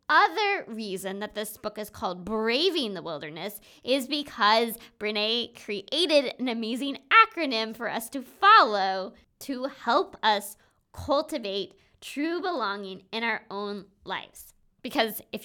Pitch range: 205-270 Hz